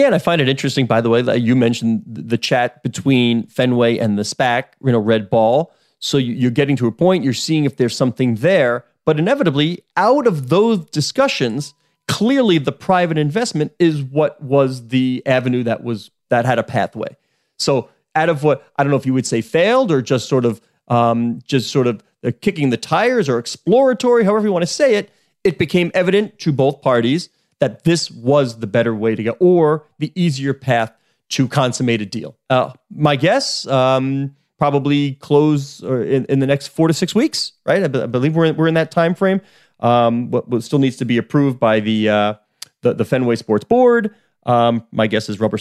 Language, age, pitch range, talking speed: English, 30-49, 115-155 Hz, 200 wpm